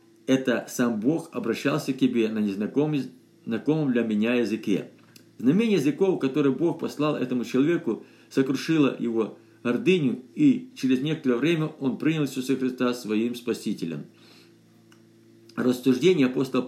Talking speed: 120 wpm